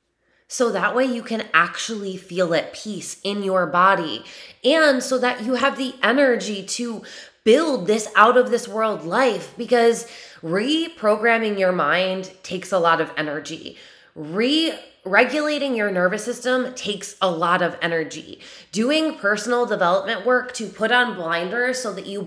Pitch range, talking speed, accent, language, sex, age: 185-245 Hz, 145 wpm, American, English, female, 20-39